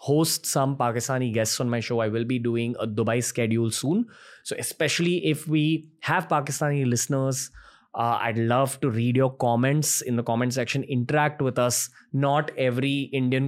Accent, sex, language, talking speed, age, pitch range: Indian, male, English, 175 wpm, 20-39, 120-150 Hz